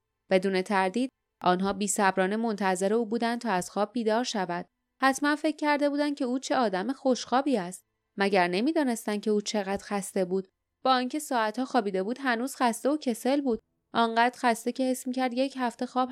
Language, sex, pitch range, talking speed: Persian, female, 195-245 Hz, 180 wpm